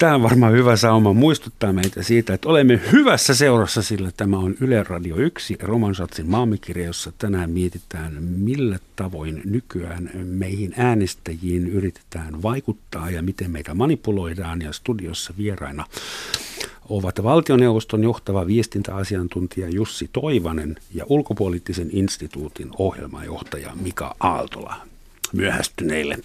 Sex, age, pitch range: male, 50-69, 85-110 Hz